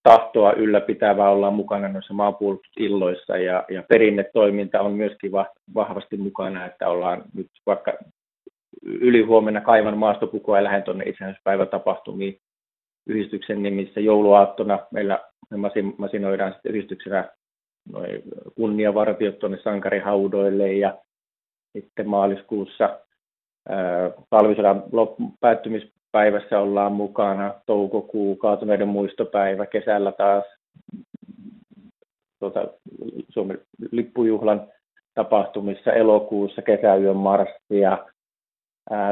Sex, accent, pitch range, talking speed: male, native, 100-110 Hz, 90 wpm